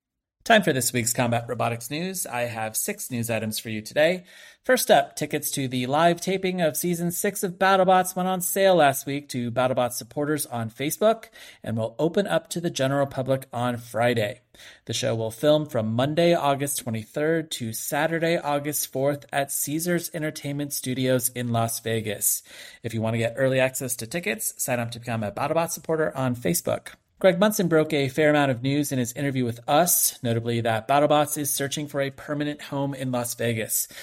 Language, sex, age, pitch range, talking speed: English, male, 30-49, 120-155 Hz, 190 wpm